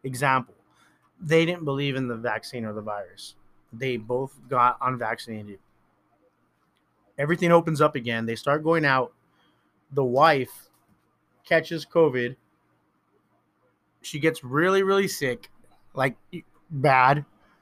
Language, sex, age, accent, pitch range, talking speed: English, male, 30-49, American, 120-150 Hz, 110 wpm